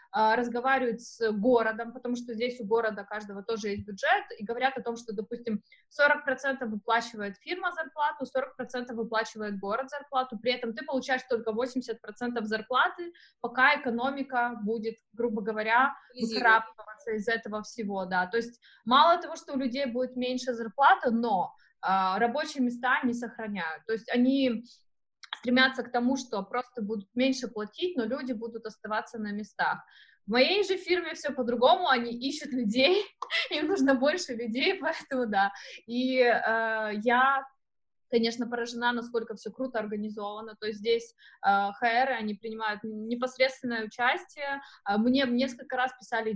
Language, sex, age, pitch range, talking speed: Russian, female, 20-39, 220-260 Hz, 145 wpm